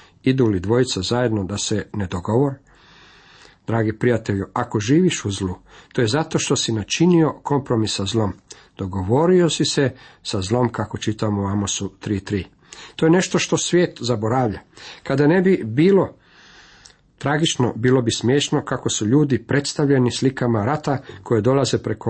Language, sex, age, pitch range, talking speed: Croatian, male, 50-69, 110-135 Hz, 150 wpm